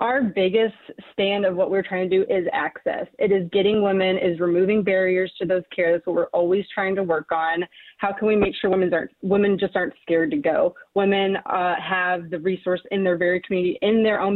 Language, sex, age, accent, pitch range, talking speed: English, female, 20-39, American, 180-205 Hz, 225 wpm